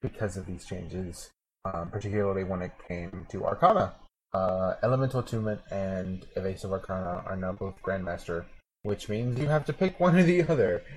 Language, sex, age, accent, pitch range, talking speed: English, male, 20-39, American, 95-120 Hz, 170 wpm